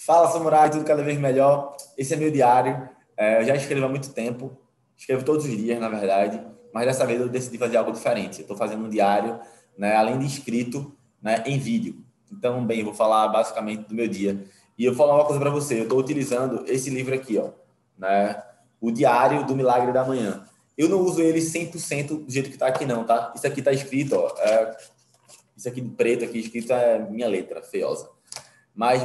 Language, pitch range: Portuguese, 110-140 Hz